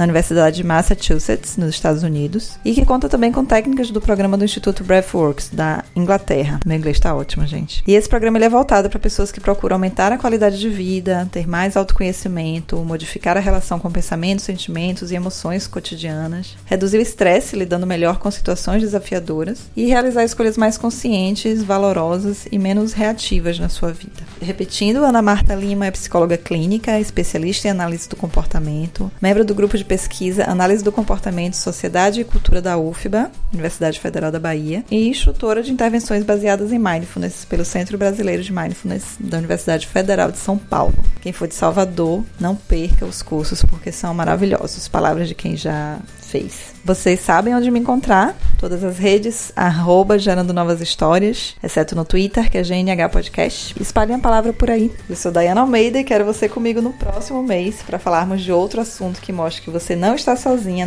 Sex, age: female, 20-39